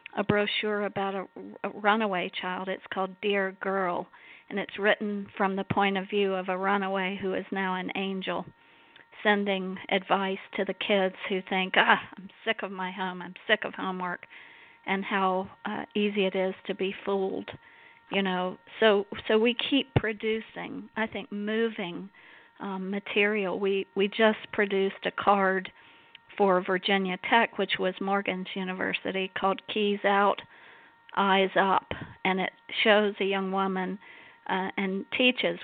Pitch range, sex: 190-205 Hz, female